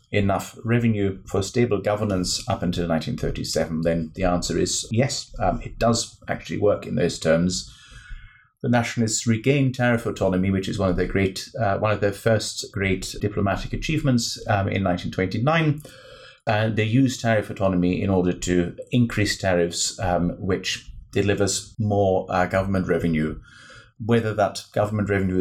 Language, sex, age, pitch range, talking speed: English, male, 30-49, 90-115 Hz, 155 wpm